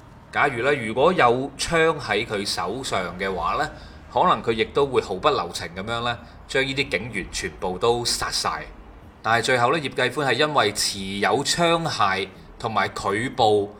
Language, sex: Chinese, male